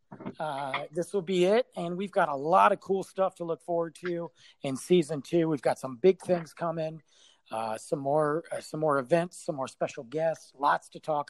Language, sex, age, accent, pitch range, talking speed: English, male, 40-59, American, 130-185 Hz, 210 wpm